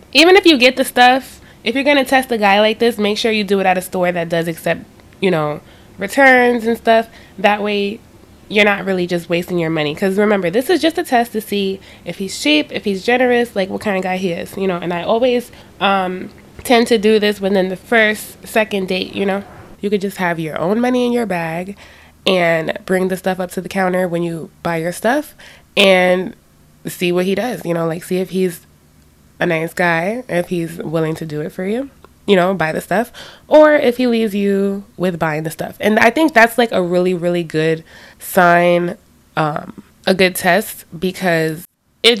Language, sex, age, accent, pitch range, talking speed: English, female, 20-39, American, 175-220 Hz, 220 wpm